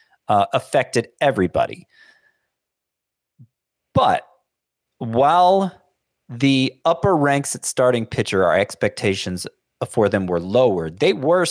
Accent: American